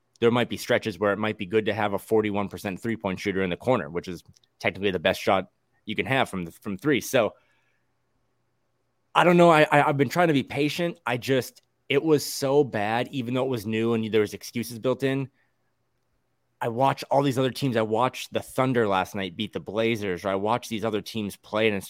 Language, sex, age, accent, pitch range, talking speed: English, male, 20-39, American, 110-130 Hz, 225 wpm